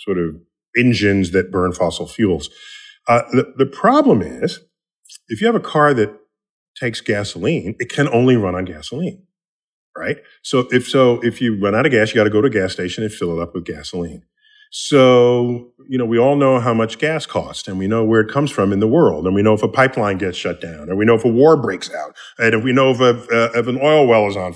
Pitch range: 110-150 Hz